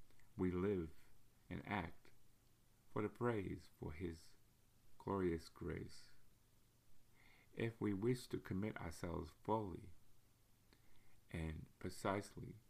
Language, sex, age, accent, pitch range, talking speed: English, male, 50-69, American, 90-115 Hz, 95 wpm